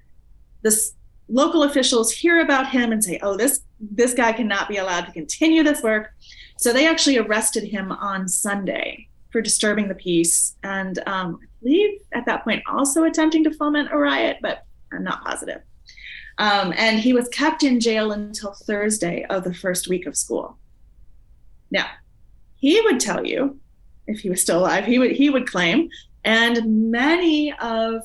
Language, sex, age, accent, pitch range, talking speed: English, female, 30-49, American, 215-285 Hz, 170 wpm